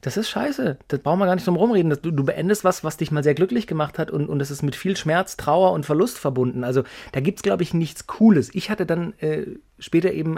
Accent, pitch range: German, 140-185 Hz